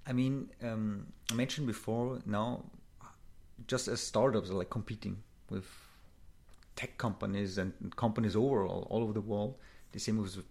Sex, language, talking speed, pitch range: male, English, 155 wpm, 105-130 Hz